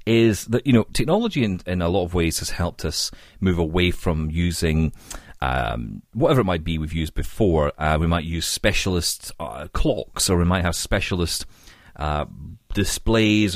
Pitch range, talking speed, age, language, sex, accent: 80-100 Hz, 175 wpm, 40-59, English, male, British